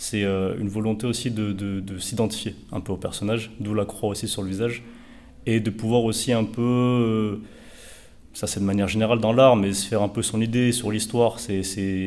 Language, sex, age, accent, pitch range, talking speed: French, male, 30-49, French, 95-115 Hz, 215 wpm